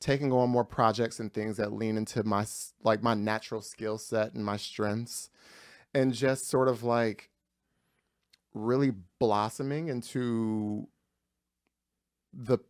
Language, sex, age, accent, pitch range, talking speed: English, male, 30-49, American, 110-130 Hz, 130 wpm